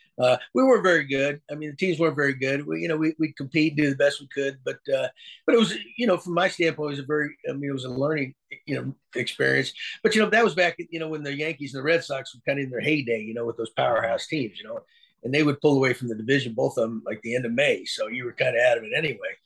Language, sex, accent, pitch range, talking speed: English, male, American, 150-205 Hz, 310 wpm